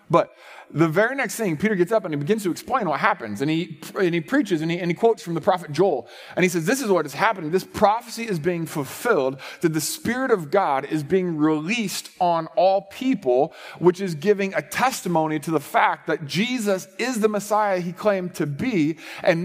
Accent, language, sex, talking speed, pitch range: American, English, male, 220 wpm, 160-220 Hz